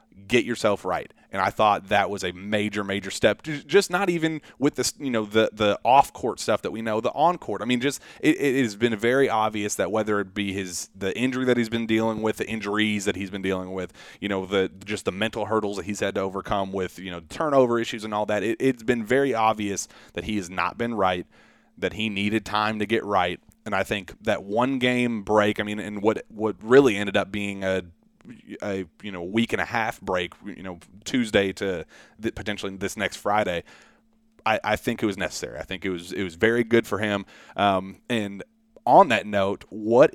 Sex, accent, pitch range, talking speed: male, American, 100-130 Hz, 225 wpm